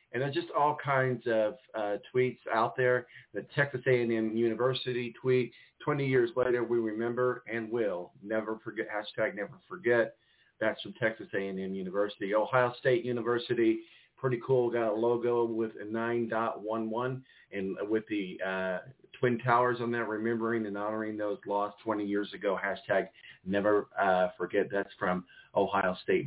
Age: 40-59